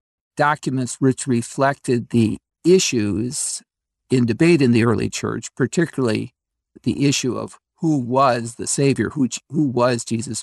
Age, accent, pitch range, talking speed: 50-69, American, 115-135 Hz, 130 wpm